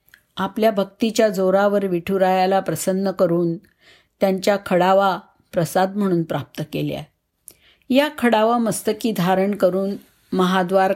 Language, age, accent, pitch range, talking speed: Marathi, 50-69, native, 175-220 Hz, 100 wpm